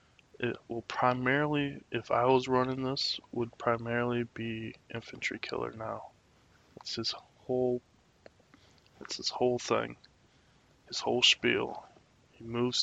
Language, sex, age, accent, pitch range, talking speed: English, male, 20-39, American, 115-125 Hz, 120 wpm